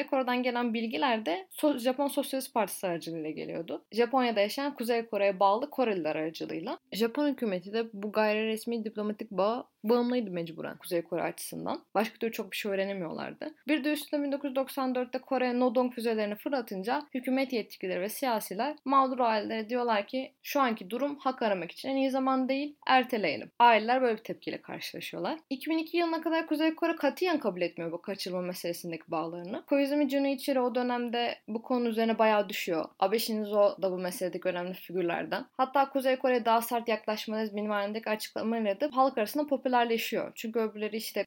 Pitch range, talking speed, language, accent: 205-270 Hz, 160 wpm, Turkish, native